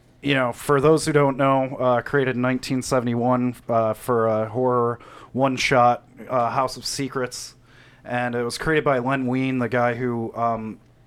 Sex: male